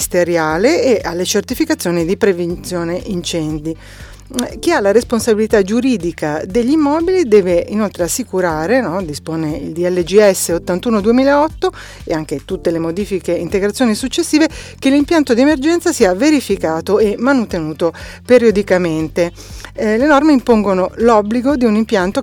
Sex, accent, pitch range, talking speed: female, native, 180-245 Hz, 120 wpm